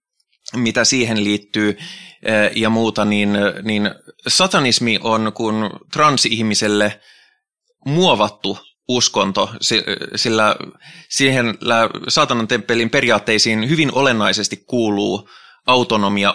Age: 20-39